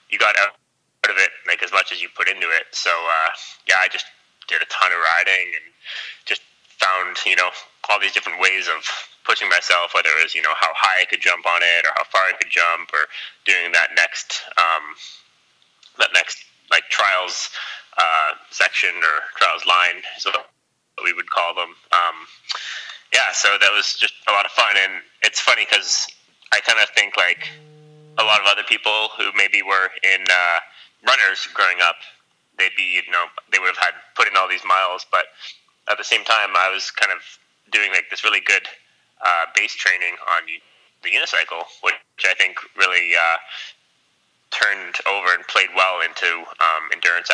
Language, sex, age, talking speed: English, male, 20-39, 190 wpm